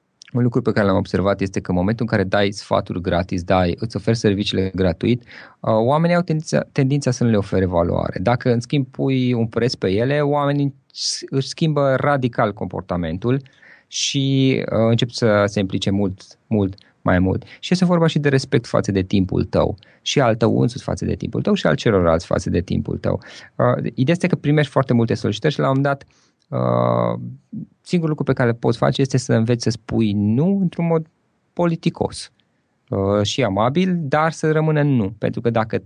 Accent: native